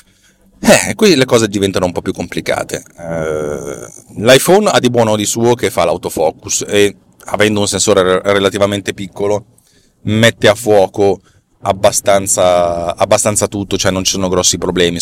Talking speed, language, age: 150 wpm, Italian, 30-49